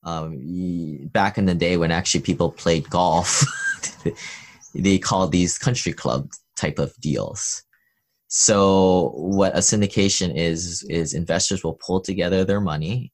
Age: 20-39